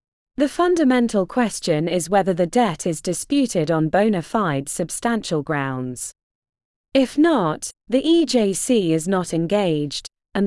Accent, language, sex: British, English, female